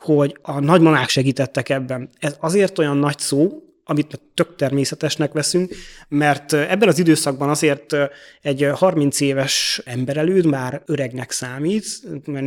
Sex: male